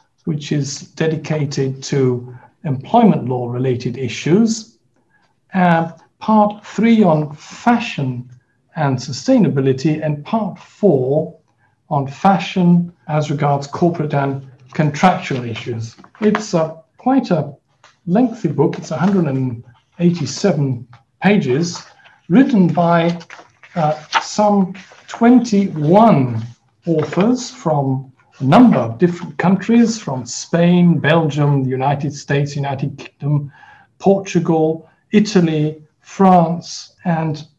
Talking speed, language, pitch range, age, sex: 95 wpm, English, 140-185 Hz, 60-79, male